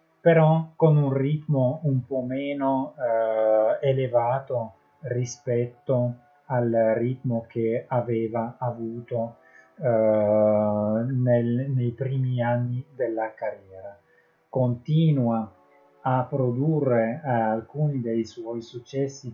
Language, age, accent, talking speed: Italian, 30-49, native, 90 wpm